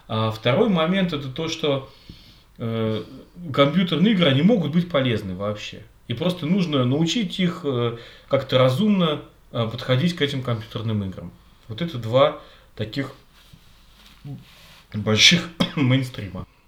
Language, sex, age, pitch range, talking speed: Russian, male, 30-49, 115-155 Hz, 120 wpm